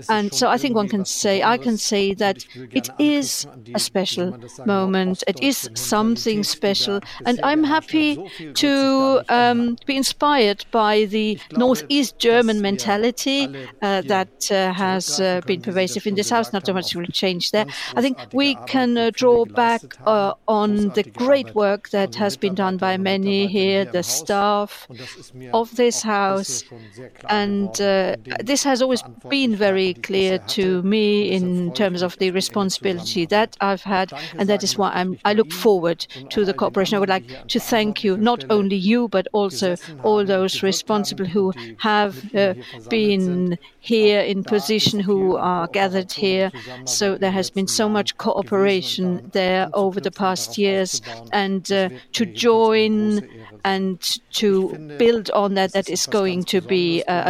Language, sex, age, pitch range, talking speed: English, female, 50-69, 185-220 Hz, 160 wpm